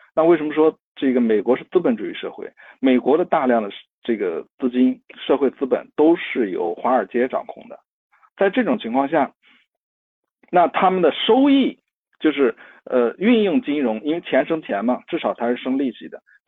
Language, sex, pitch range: Chinese, male, 115-160 Hz